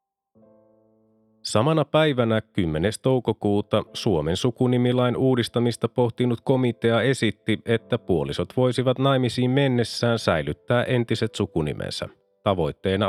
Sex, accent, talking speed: male, native, 85 wpm